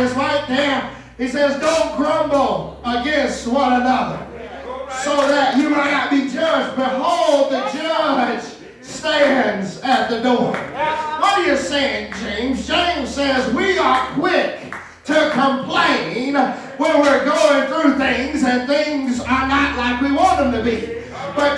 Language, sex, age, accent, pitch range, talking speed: English, male, 40-59, American, 255-315 Hz, 140 wpm